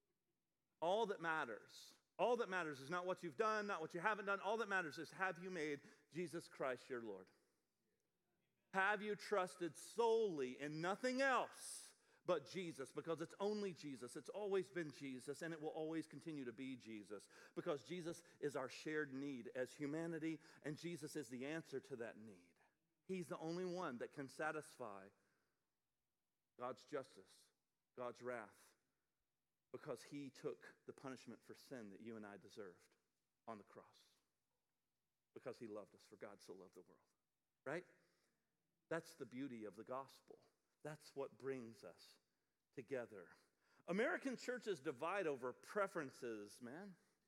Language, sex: English, male